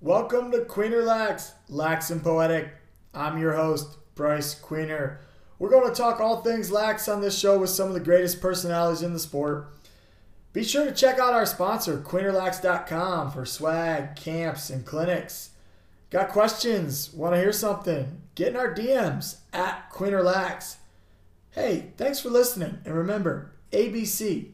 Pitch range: 140-175 Hz